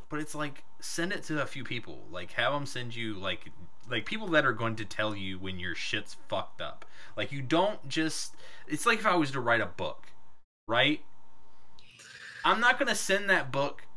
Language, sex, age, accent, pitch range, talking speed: English, male, 20-39, American, 110-185 Hz, 210 wpm